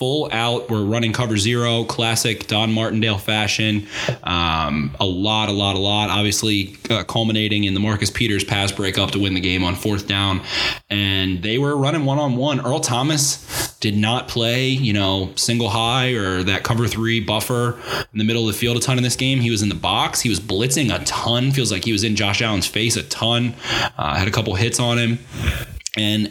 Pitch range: 100-120 Hz